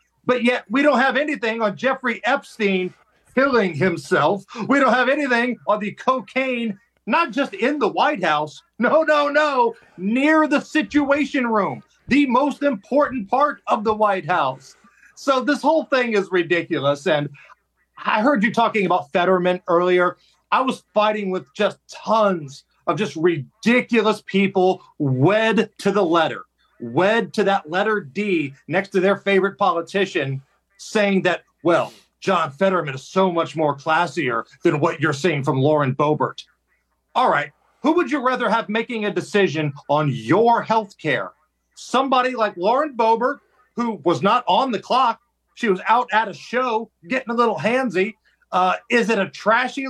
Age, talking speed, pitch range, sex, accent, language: 40-59, 160 wpm, 180-255 Hz, male, American, English